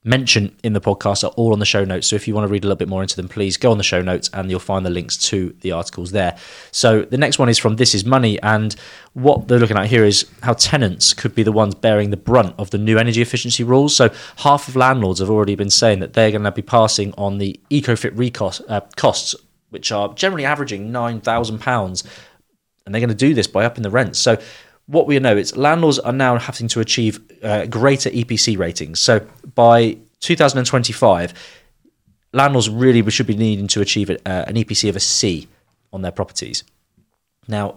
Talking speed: 220 wpm